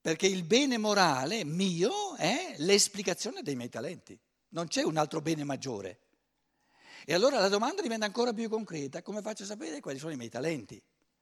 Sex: male